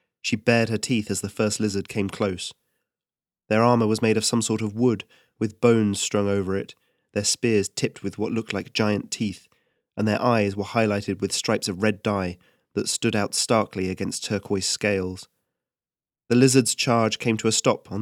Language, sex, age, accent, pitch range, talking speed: English, male, 30-49, British, 100-120 Hz, 195 wpm